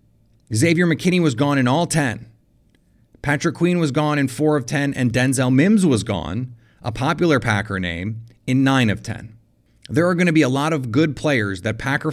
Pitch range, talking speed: 115-145 Hz, 200 wpm